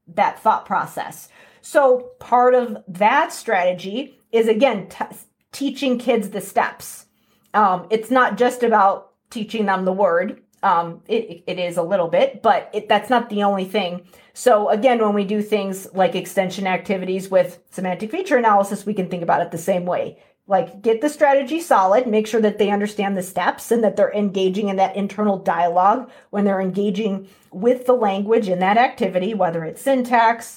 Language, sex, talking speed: English, female, 175 wpm